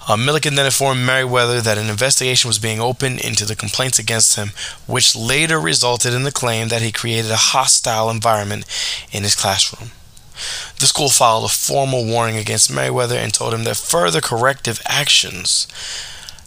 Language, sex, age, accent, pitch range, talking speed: English, male, 20-39, American, 115-140 Hz, 170 wpm